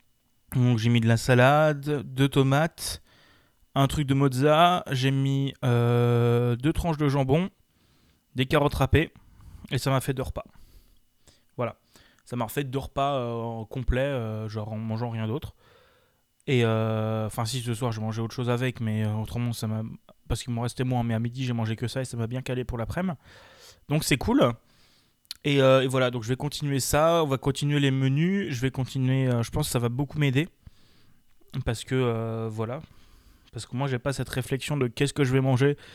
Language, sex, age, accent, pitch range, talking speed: French, male, 20-39, French, 115-140 Hz, 205 wpm